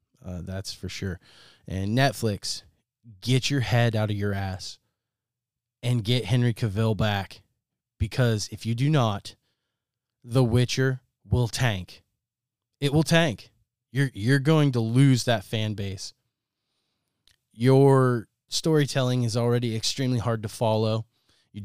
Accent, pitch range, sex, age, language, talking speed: American, 105-125 Hz, male, 20-39, English, 130 wpm